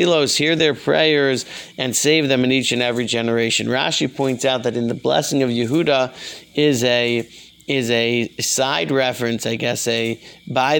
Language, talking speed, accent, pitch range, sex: English, 165 wpm, American, 120-145 Hz, male